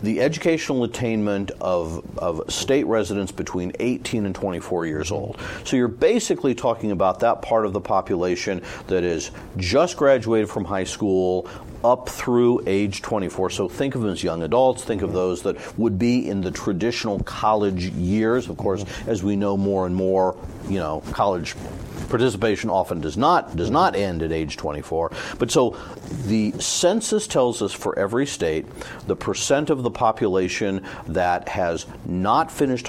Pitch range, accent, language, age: 95-120 Hz, American, English, 50-69